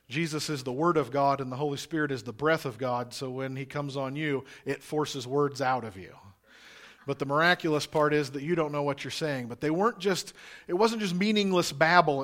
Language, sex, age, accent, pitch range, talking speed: English, male, 40-59, American, 145-175 Hz, 235 wpm